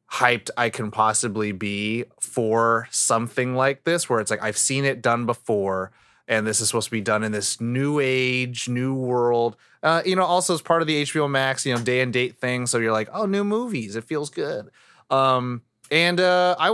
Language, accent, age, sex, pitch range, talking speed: English, American, 20-39, male, 115-170 Hz, 210 wpm